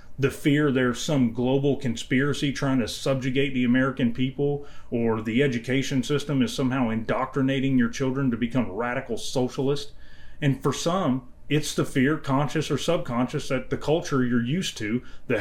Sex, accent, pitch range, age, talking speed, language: male, American, 125-150 Hz, 30-49, 160 wpm, English